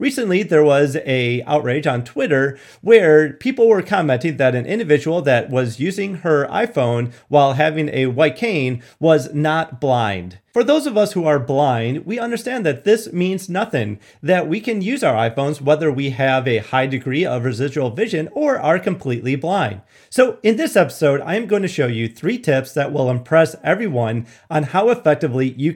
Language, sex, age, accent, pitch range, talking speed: English, male, 30-49, American, 125-180 Hz, 185 wpm